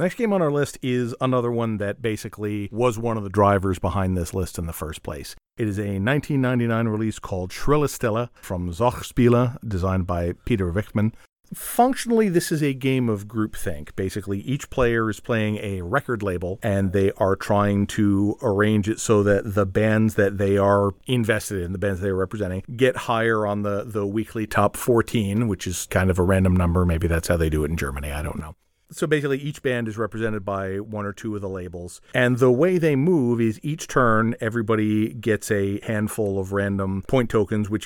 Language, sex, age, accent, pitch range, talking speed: English, male, 40-59, American, 95-120 Hz, 200 wpm